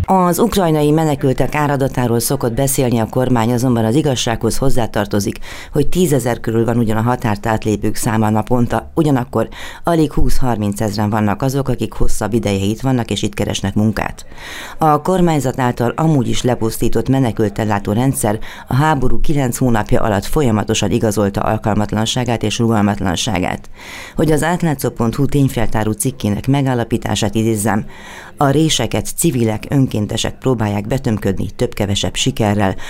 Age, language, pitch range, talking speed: 30-49, Hungarian, 105-130 Hz, 120 wpm